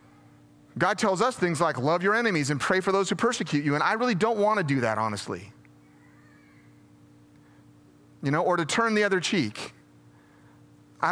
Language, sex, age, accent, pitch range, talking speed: English, male, 30-49, American, 120-185 Hz, 180 wpm